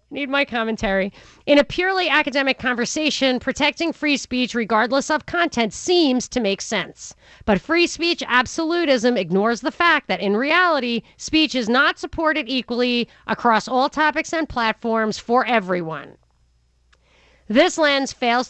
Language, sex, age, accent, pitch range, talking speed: English, female, 40-59, American, 215-285 Hz, 140 wpm